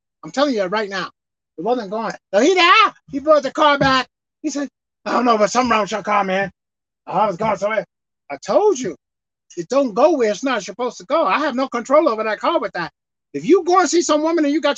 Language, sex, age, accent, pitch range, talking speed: English, male, 30-49, American, 220-370 Hz, 255 wpm